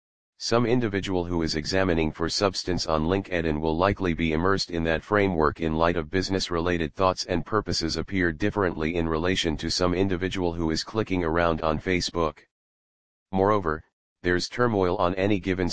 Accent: American